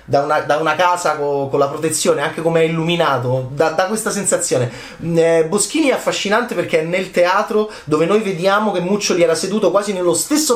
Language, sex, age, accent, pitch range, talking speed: Italian, male, 30-49, native, 135-205 Hz, 200 wpm